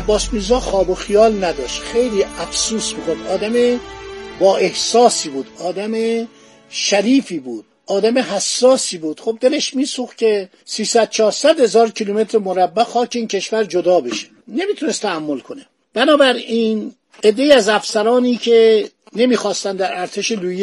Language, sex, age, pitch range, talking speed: Persian, male, 50-69, 195-250 Hz, 135 wpm